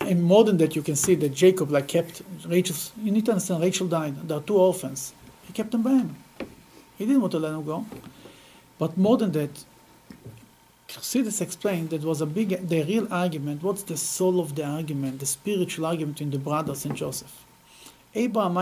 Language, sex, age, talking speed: English, male, 50-69, 205 wpm